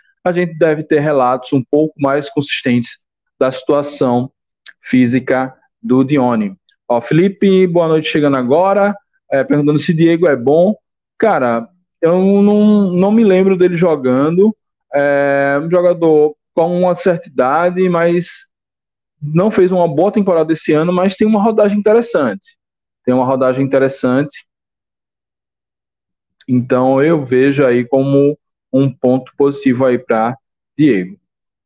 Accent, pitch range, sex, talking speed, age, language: Brazilian, 135-190 Hz, male, 130 wpm, 20-39, Portuguese